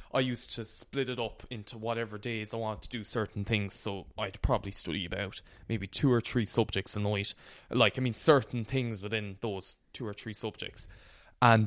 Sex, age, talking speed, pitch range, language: male, 20-39, 200 wpm, 105-125 Hz, English